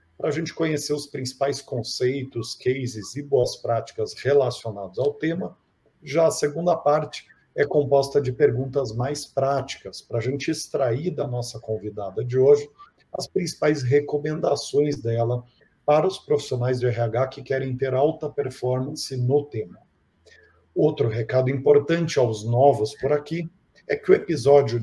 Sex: male